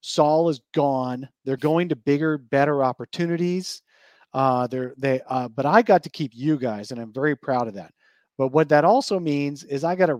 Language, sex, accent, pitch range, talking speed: English, male, American, 125-155 Hz, 205 wpm